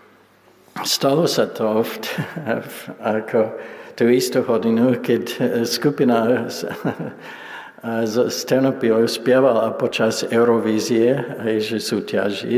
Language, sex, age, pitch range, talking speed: Slovak, male, 60-79, 110-130 Hz, 95 wpm